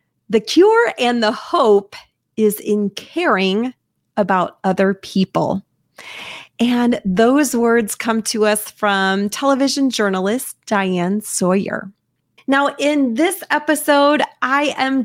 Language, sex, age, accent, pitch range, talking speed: English, female, 30-49, American, 210-275 Hz, 110 wpm